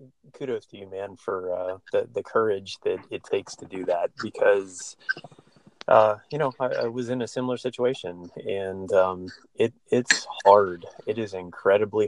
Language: English